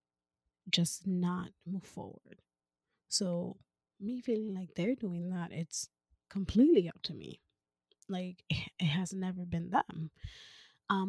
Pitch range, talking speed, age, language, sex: 170-200 Hz, 125 wpm, 20-39, English, female